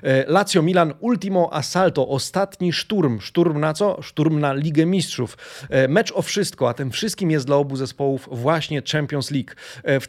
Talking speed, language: 160 wpm, Polish